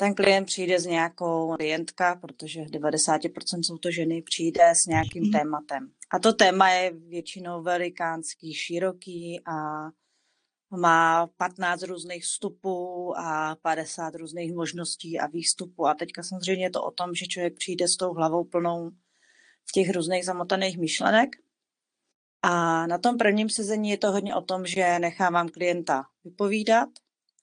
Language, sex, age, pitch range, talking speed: Czech, female, 30-49, 165-190 Hz, 145 wpm